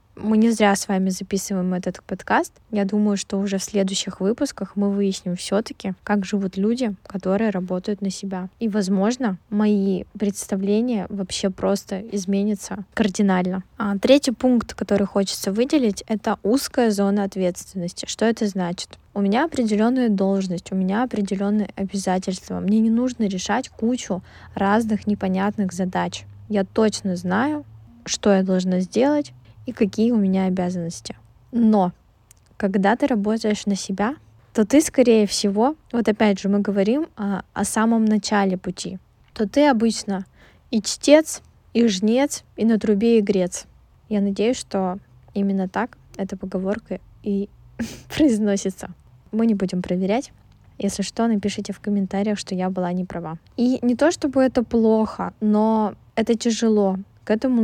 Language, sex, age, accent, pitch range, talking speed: Russian, female, 20-39, native, 190-225 Hz, 145 wpm